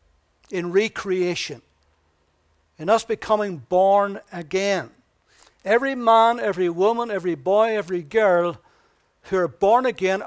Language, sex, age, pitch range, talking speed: English, male, 60-79, 170-215 Hz, 110 wpm